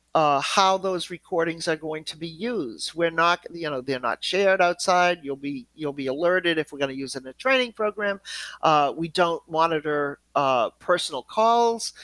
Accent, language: American, English